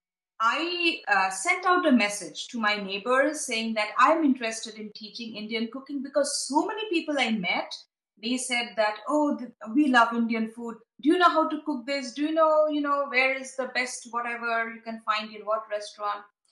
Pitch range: 205-275 Hz